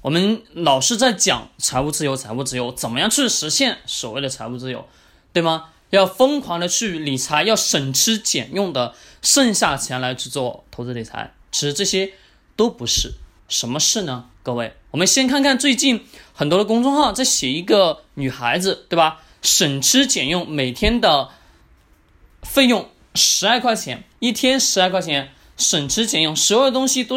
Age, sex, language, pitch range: 20-39, male, Chinese, 140-230 Hz